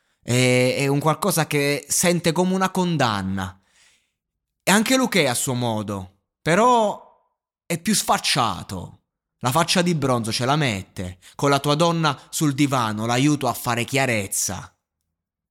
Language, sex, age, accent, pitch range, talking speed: Italian, male, 20-39, native, 105-135 Hz, 135 wpm